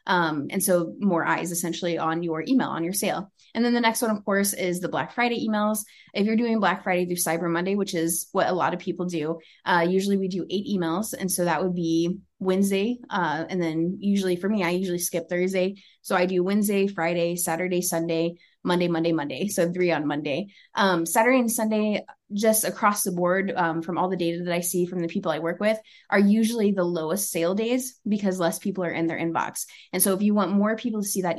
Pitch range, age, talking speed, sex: 170-200 Hz, 20-39, 230 wpm, female